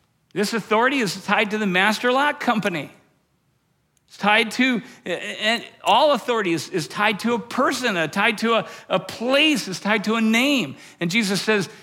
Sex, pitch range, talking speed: male, 165-235 Hz, 180 wpm